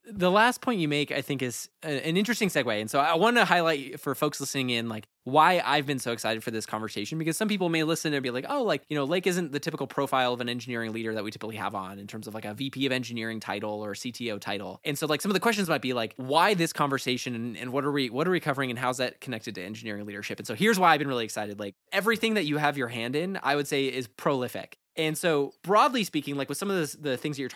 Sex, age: male, 20-39